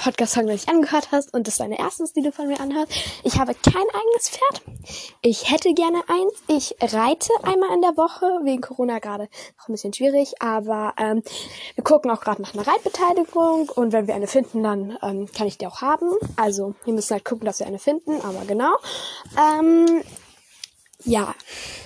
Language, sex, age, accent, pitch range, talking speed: German, female, 10-29, German, 220-330 Hz, 190 wpm